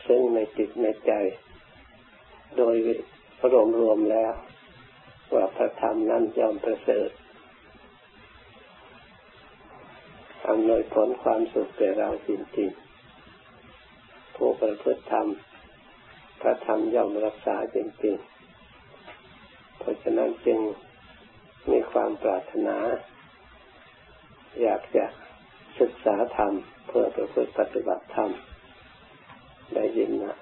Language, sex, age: Thai, male, 60-79